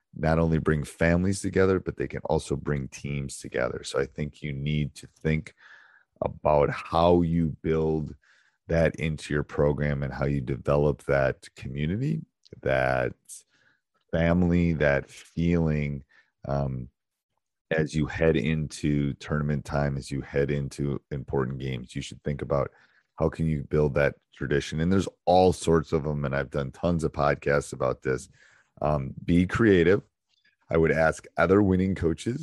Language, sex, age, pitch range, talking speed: English, male, 30-49, 70-80 Hz, 155 wpm